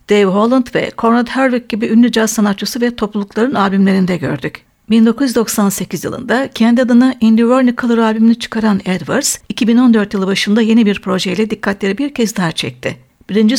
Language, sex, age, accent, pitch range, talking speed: Turkish, female, 60-79, native, 205-240 Hz, 150 wpm